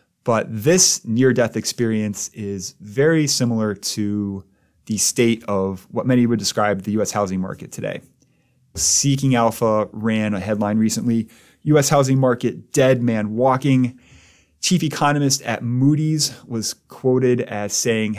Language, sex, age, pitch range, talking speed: English, male, 30-49, 105-125 Hz, 130 wpm